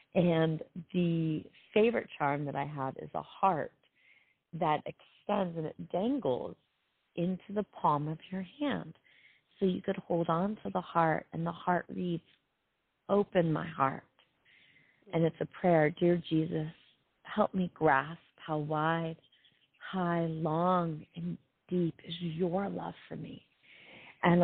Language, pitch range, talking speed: English, 155-190 Hz, 140 wpm